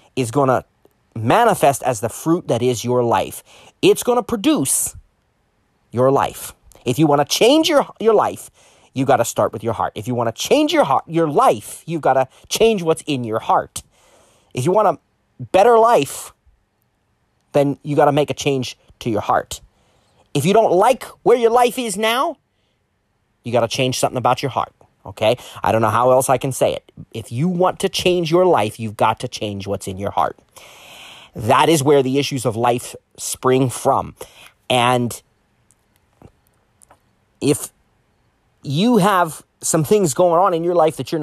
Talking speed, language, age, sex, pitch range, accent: 175 wpm, English, 30-49, male, 115-165 Hz, American